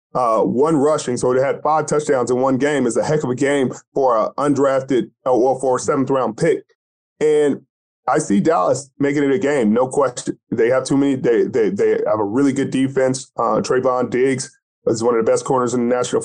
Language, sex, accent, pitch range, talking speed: English, male, American, 125-150 Hz, 230 wpm